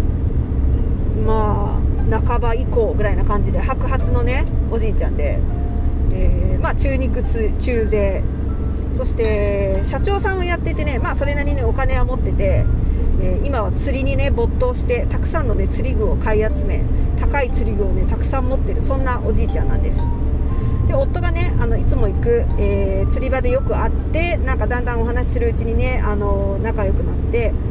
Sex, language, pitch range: female, Japanese, 65-100 Hz